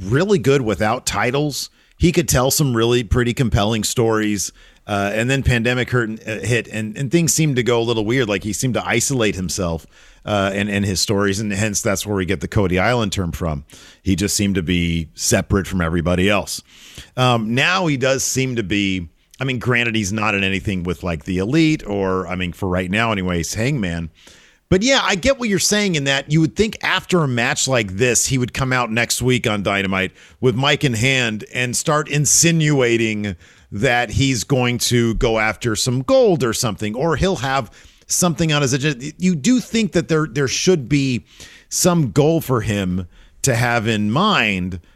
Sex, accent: male, American